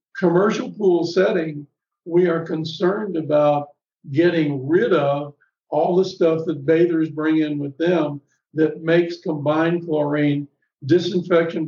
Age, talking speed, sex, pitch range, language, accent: 50-69, 125 wpm, male, 155-175 Hz, English, American